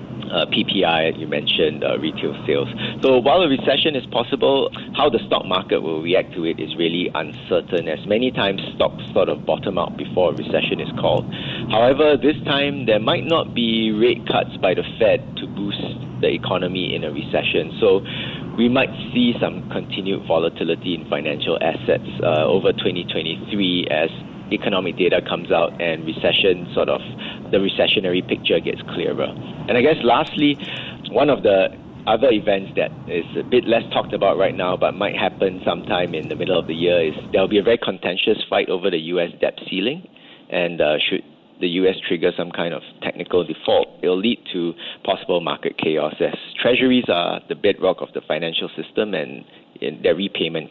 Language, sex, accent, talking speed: English, male, Malaysian, 180 wpm